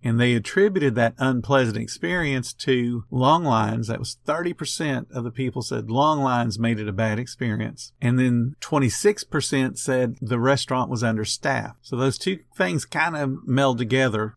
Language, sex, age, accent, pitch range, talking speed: English, male, 50-69, American, 120-145 Hz, 165 wpm